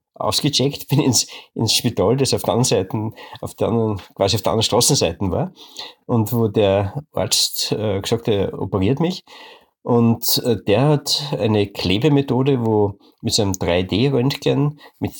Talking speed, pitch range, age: 155 wpm, 100-130 Hz, 50-69